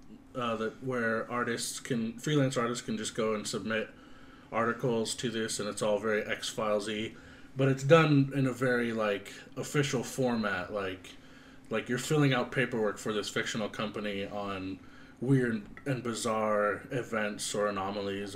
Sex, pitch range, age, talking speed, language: male, 110-135 Hz, 30-49, 155 wpm, English